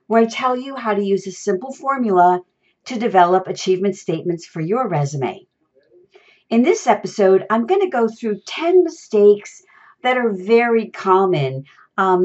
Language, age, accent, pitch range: English, 50-69, American, 185-230 Hz